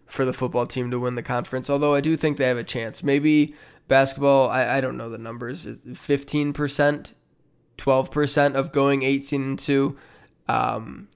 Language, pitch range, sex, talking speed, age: English, 125-145 Hz, male, 160 wpm, 20-39